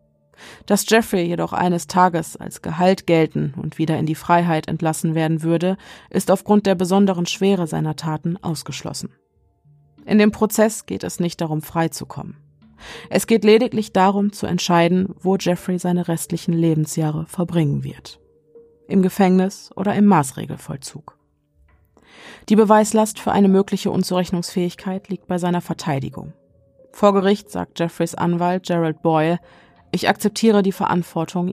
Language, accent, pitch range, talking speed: German, German, 160-195 Hz, 135 wpm